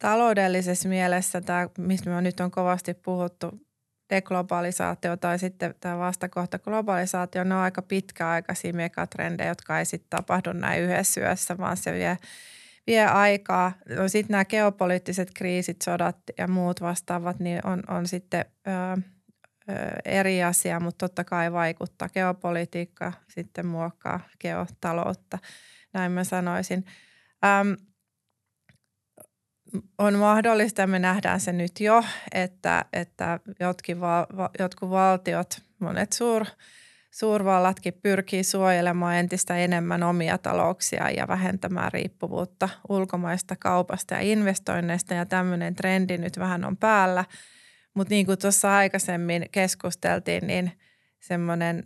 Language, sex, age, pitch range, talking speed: Finnish, female, 20-39, 175-195 Hz, 120 wpm